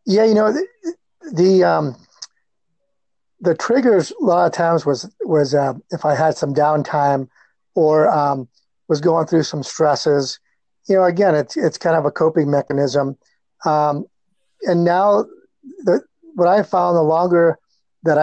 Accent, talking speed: American, 155 wpm